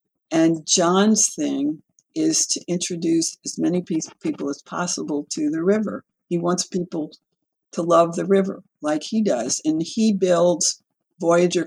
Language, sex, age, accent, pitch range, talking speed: English, female, 60-79, American, 170-255 Hz, 145 wpm